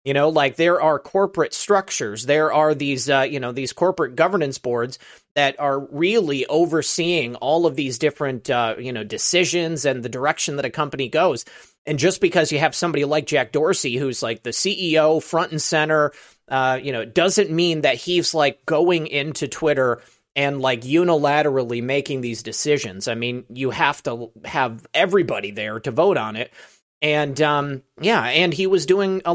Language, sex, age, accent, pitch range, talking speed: English, male, 30-49, American, 130-165 Hz, 180 wpm